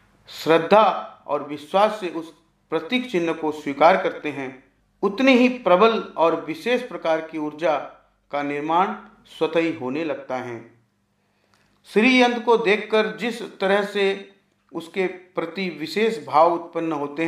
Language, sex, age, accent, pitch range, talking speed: Hindi, male, 40-59, native, 150-190 Hz, 130 wpm